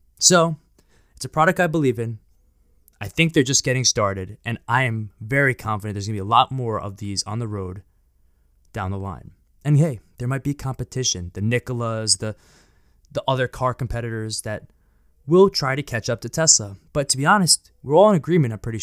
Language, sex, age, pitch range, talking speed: English, male, 20-39, 100-145 Hz, 205 wpm